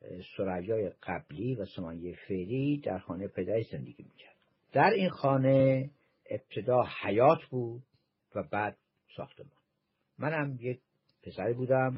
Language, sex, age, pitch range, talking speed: Persian, male, 60-79, 105-150 Hz, 125 wpm